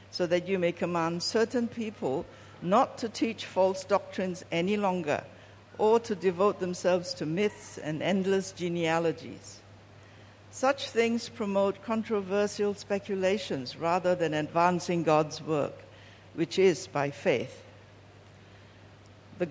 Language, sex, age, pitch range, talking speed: English, female, 60-79, 140-200 Hz, 115 wpm